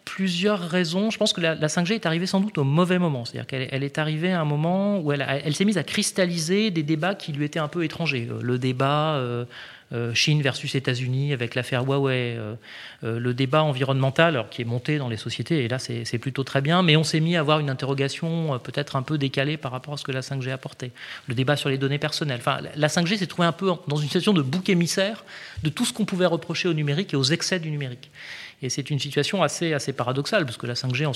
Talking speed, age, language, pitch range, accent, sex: 265 wpm, 30-49, French, 130-165 Hz, French, male